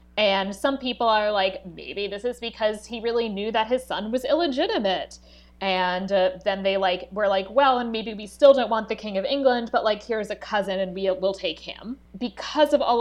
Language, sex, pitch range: English, female, 190-225 Hz